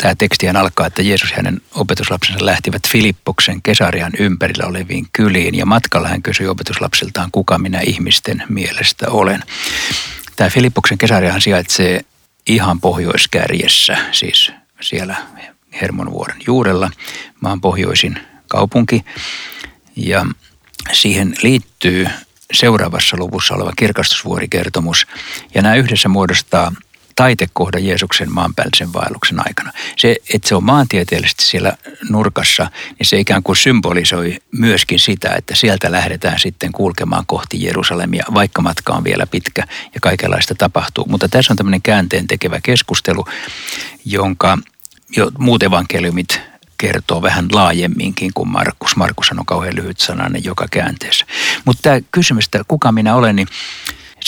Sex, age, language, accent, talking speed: male, 60-79, Finnish, native, 125 wpm